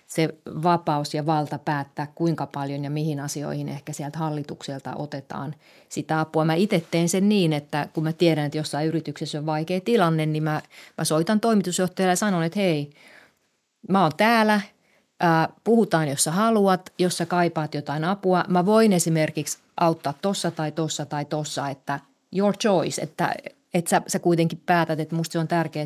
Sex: female